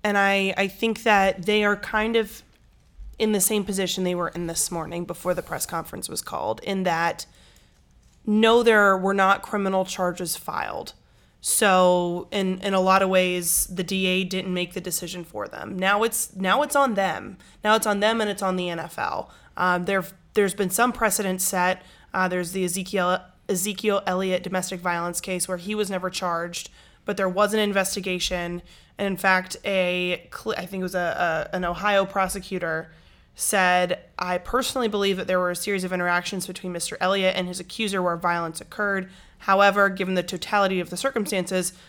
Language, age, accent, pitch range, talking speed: English, 20-39, American, 180-200 Hz, 185 wpm